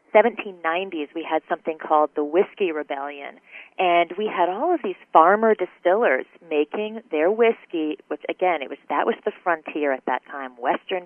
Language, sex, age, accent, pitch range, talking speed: English, female, 40-59, American, 160-215 Hz, 180 wpm